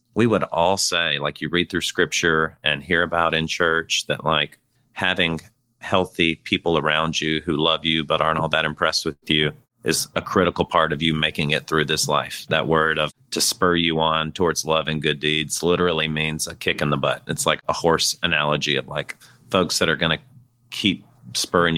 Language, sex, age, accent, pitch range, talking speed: English, male, 40-59, American, 80-95 Hz, 205 wpm